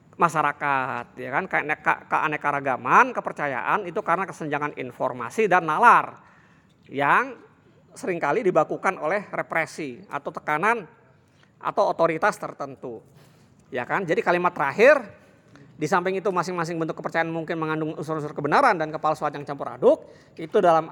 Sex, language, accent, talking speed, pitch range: male, Indonesian, native, 125 wpm, 150-200 Hz